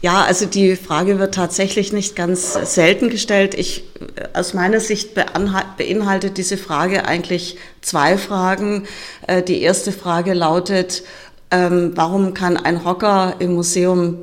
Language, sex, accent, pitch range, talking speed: German, female, German, 170-195 Hz, 125 wpm